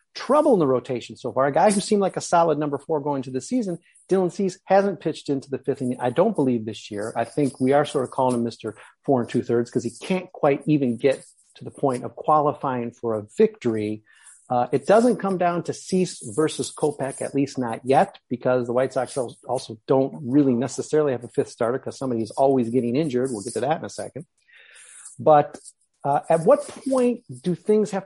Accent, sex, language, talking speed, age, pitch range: American, male, English, 220 wpm, 40-59, 120-155 Hz